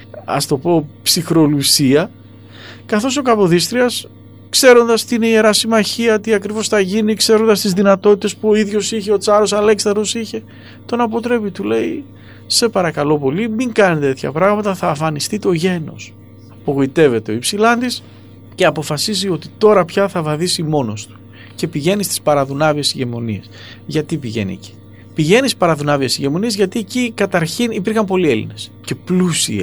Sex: male